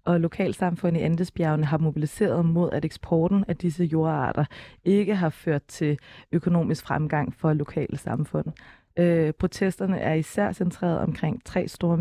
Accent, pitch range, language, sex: native, 160-185 Hz, Danish, female